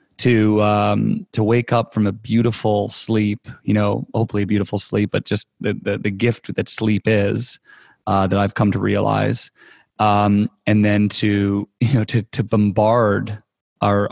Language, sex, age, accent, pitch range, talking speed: English, male, 20-39, American, 100-115 Hz, 170 wpm